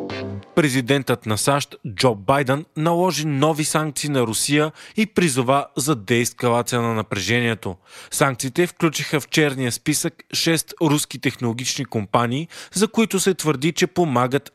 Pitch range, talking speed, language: 125-155 Hz, 130 wpm, Bulgarian